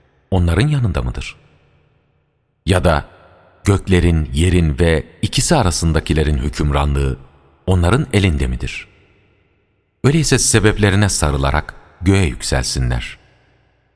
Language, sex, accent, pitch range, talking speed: Turkish, male, native, 65-100 Hz, 80 wpm